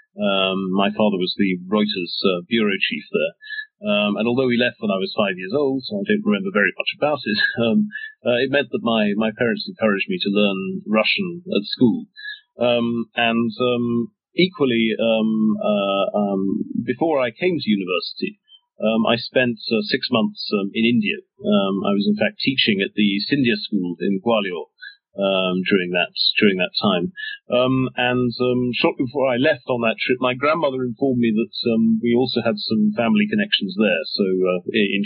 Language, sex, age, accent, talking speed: English, male, 40-59, British, 185 wpm